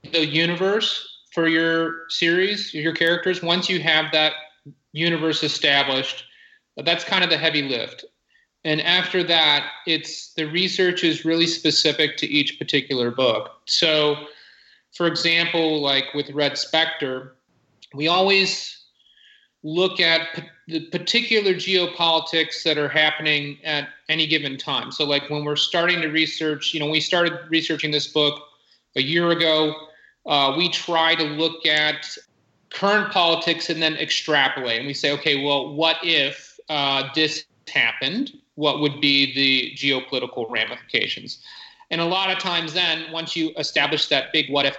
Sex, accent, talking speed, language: male, American, 145 wpm, English